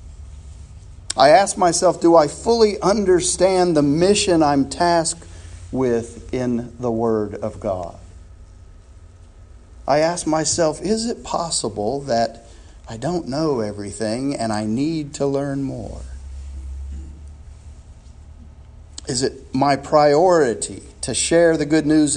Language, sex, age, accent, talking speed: English, male, 50-69, American, 115 wpm